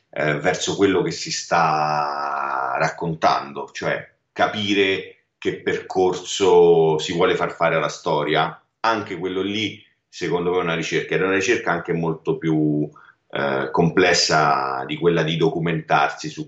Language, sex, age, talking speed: Italian, male, 40-59, 135 wpm